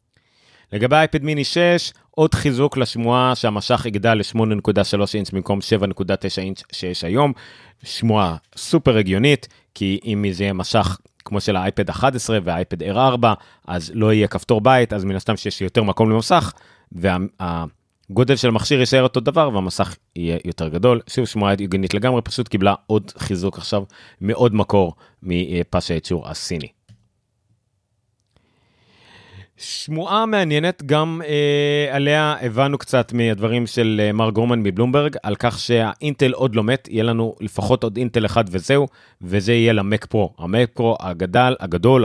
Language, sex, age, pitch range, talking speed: Hebrew, male, 30-49, 100-125 Hz, 140 wpm